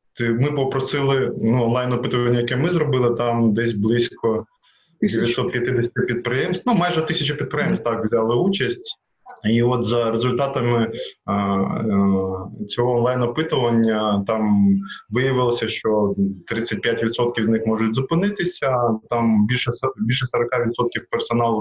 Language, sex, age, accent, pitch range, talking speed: Ukrainian, male, 20-39, native, 110-125 Hz, 110 wpm